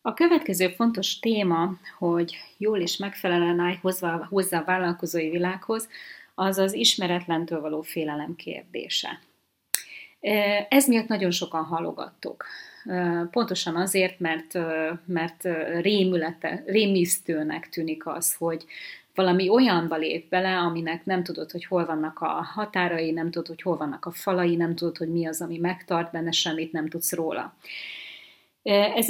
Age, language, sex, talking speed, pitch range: 30-49, Hungarian, female, 135 wpm, 165-205 Hz